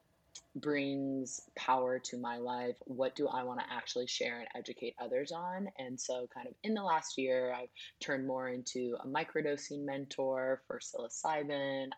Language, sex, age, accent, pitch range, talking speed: English, female, 20-39, American, 125-150 Hz, 165 wpm